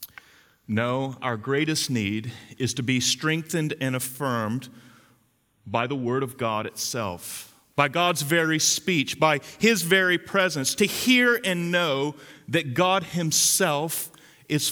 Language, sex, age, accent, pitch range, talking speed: English, male, 40-59, American, 130-180 Hz, 130 wpm